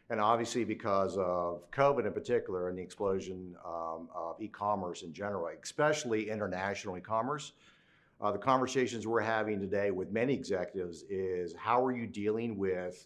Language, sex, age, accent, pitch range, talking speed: English, male, 50-69, American, 95-115 Hz, 145 wpm